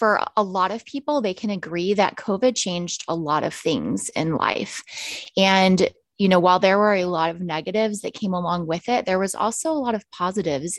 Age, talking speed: 20-39, 215 wpm